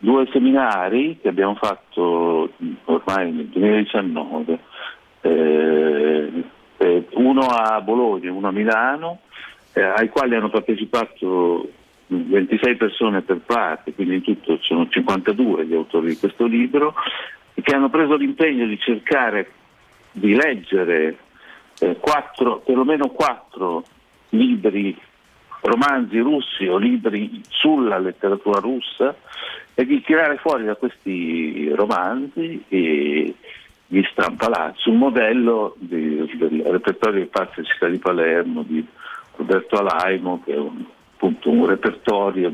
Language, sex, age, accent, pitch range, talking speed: Italian, male, 50-69, native, 90-135 Hz, 120 wpm